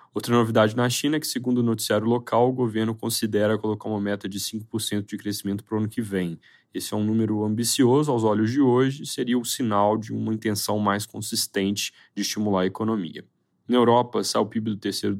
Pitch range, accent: 100-115 Hz, Brazilian